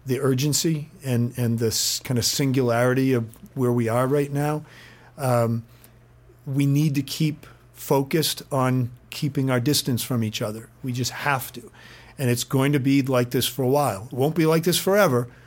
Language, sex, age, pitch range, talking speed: English, male, 40-59, 120-140 Hz, 180 wpm